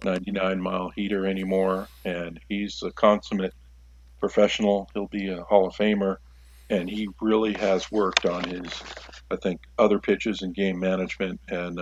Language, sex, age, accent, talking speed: English, male, 50-69, American, 150 wpm